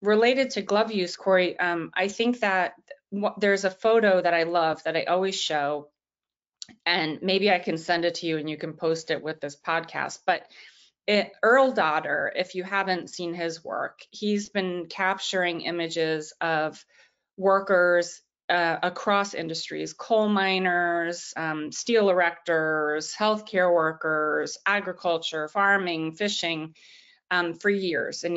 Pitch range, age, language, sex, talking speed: 165-200 Hz, 30-49, English, female, 140 wpm